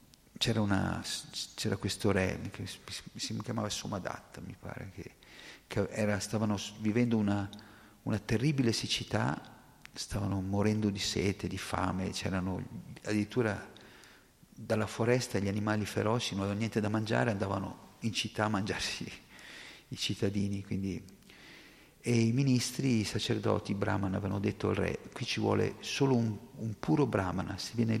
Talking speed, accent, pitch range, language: 145 wpm, native, 100-115 Hz, Italian